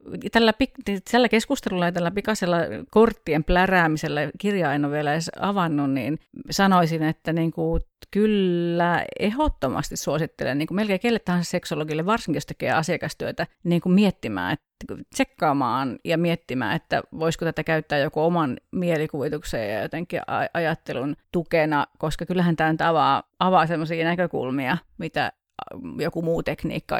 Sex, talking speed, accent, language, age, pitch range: female, 135 wpm, native, Finnish, 40-59, 155-180 Hz